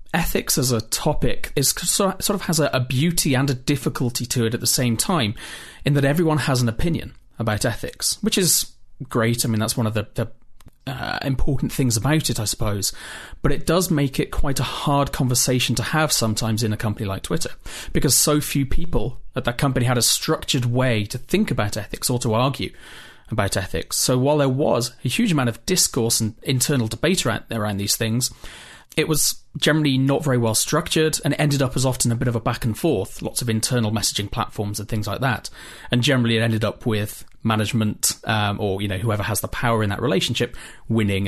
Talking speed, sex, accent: 210 wpm, male, British